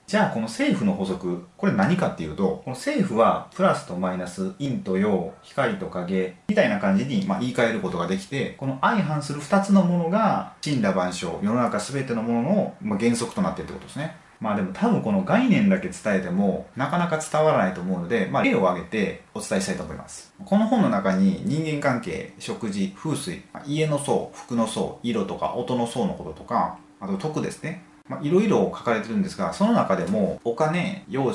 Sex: male